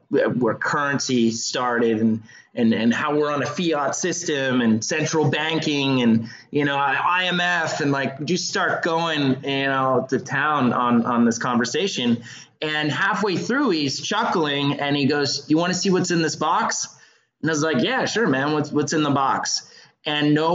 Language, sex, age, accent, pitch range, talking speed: English, male, 20-39, American, 125-160 Hz, 180 wpm